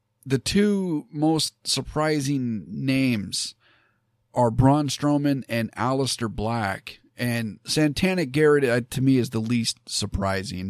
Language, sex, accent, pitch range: English, male, American, 110-135 Hz